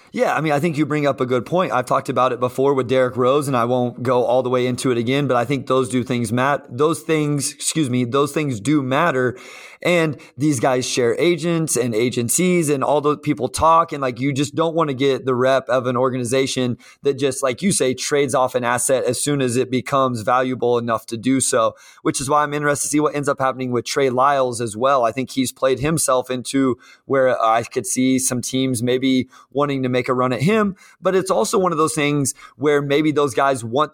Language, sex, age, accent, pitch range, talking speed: English, male, 30-49, American, 125-150 Hz, 240 wpm